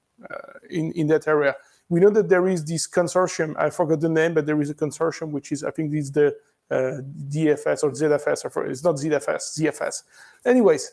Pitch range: 150-190 Hz